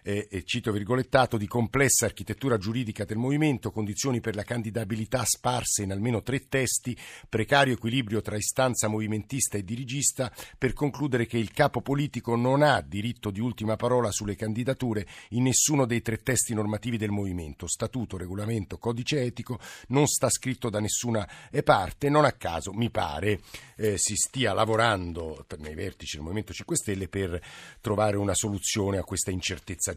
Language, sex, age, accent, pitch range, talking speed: Italian, male, 50-69, native, 105-125 Hz, 160 wpm